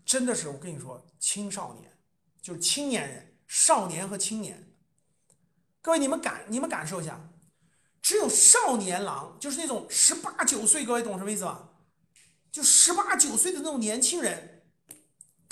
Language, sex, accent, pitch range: Chinese, male, native, 210-350 Hz